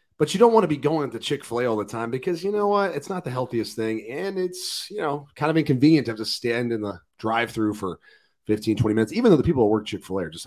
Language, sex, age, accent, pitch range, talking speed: English, male, 30-49, American, 100-140 Hz, 280 wpm